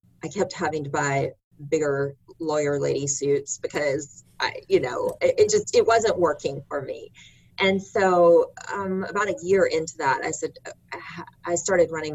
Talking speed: 170 wpm